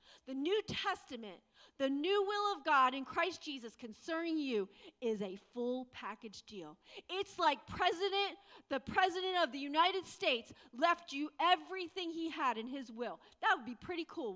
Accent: American